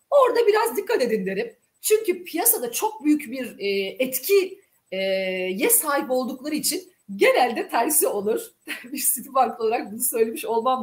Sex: female